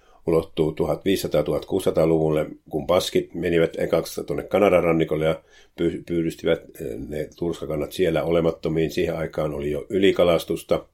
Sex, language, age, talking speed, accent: male, Finnish, 50-69, 110 wpm, native